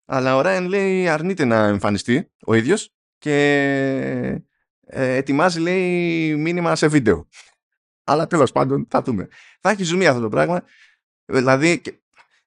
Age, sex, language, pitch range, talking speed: 20-39, male, Greek, 110-155 Hz, 130 wpm